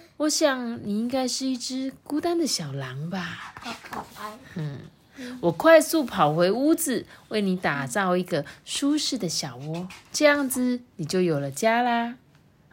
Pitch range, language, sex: 170-255 Hz, Chinese, female